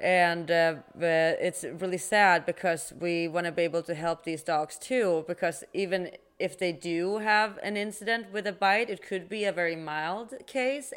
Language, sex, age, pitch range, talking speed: English, female, 30-49, 165-205 Hz, 185 wpm